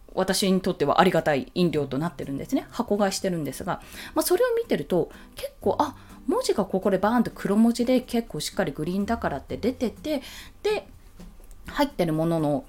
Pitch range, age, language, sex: 175-285 Hz, 20-39, Japanese, female